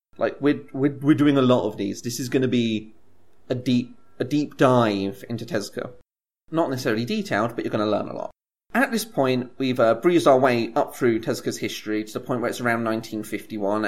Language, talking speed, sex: English, 215 wpm, male